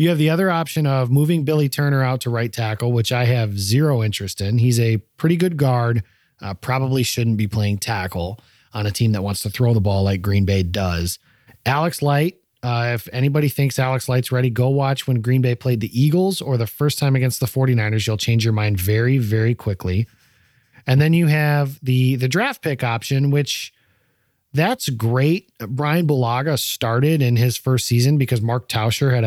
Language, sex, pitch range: English, male, 110-140 Hz